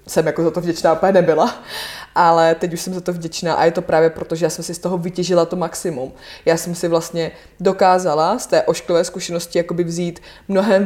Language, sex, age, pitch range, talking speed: Slovak, female, 20-39, 150-175 Hz, 215 wpm